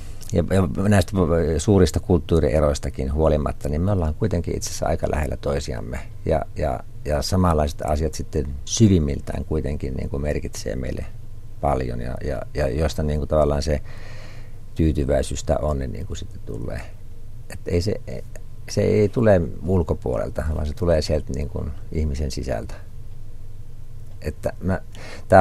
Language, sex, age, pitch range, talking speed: Finnish, male, 50-69, 75-105 Hz, 135 wpm